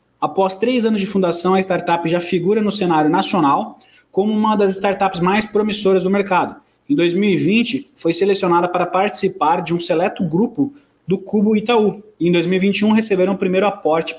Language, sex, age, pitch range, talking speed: Portuguese, male, 20-39, 170-215 Hz, 165 wpm